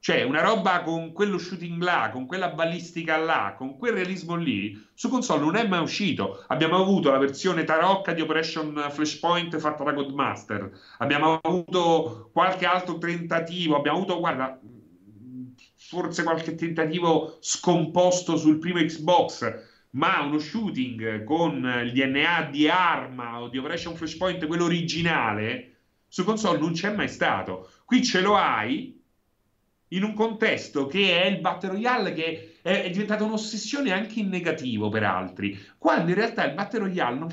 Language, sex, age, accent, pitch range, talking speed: Italian, male, 40-59, native, 135-190 Hz, 155 wpm